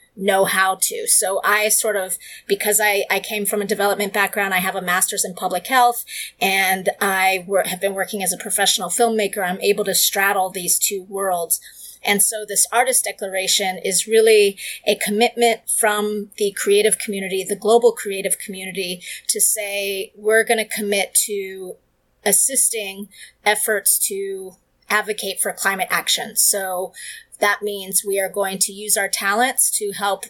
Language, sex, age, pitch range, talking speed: English, female, 30-49, 190-215 Hz, 160 wpm